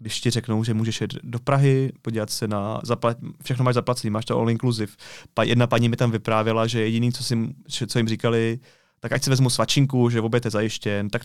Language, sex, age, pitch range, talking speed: Czech, male, 30-49, 115-135 Hz, 205 wpm